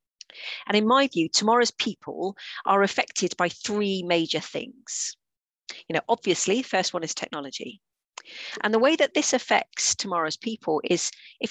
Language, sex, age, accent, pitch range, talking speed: English, female, 40-59, British, 170-235 Hz, 150 wpm